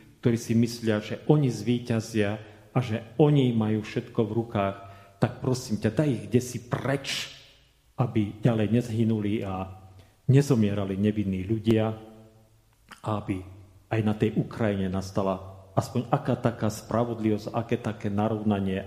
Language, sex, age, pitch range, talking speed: Slovak, male, 40-59, 100-120 Hz, 125 wpm